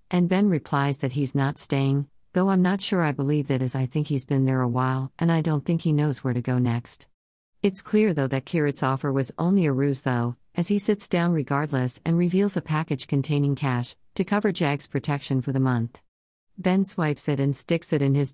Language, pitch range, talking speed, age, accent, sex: English, 130-160 Hz, 225 wpm, 50-69, American, female